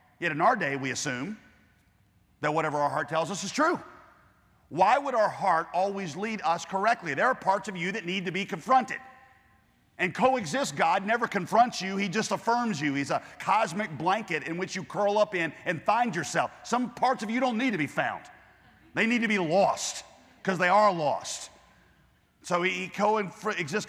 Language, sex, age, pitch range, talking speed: English, male, 40-59, 140-200 Hz, 190 wpm